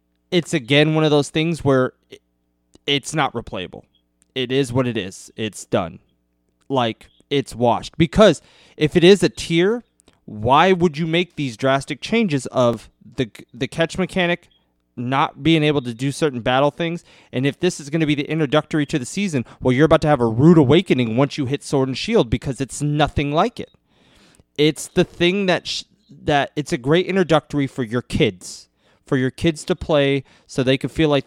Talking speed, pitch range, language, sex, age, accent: 190 wpm, 125-160 Hz, English, male, 20-39, American